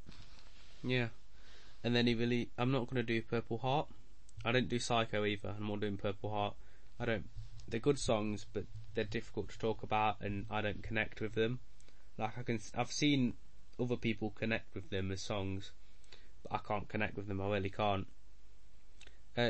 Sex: male